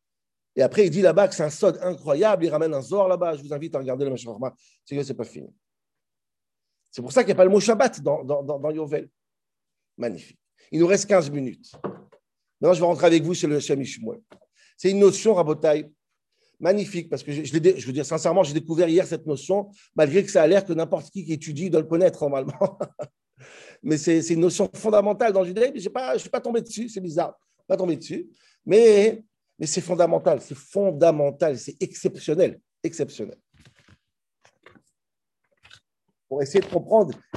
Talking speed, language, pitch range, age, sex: 200 wpm, French, 155-200 Hz, 50-69, male